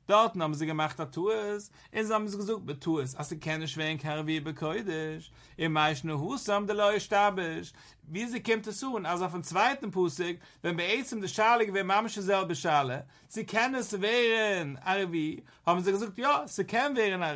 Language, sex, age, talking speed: English, male, 60-79, 240 wpm